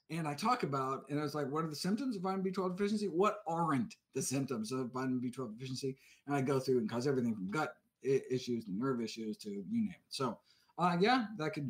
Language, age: English, 50-69